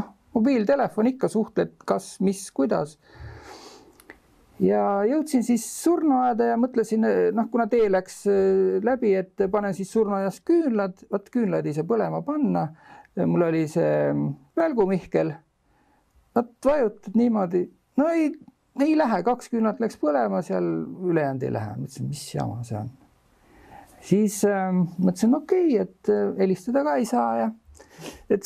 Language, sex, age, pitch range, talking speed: English, male, 50-69, 160-230 Hz, 120 wpm